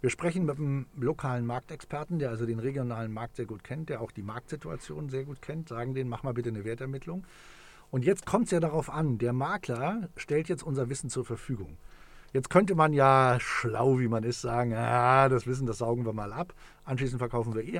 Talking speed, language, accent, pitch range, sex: 215 wpm, German, German, 120-150 Hz, male